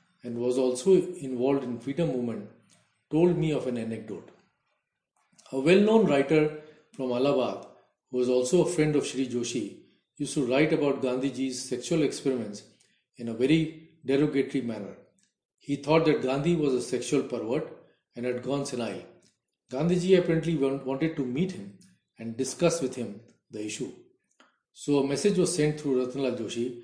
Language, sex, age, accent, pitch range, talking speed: English, male, 40-59, Indian, 125-155 Hz, 155 wpm